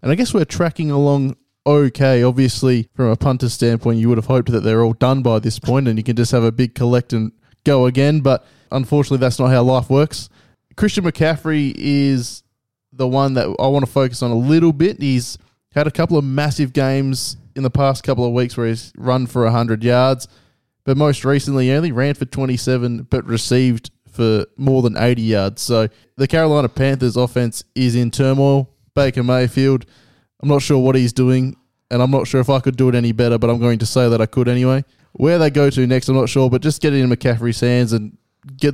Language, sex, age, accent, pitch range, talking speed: English, male, 20-39, Australian, 120-140 Hz, 220 wpm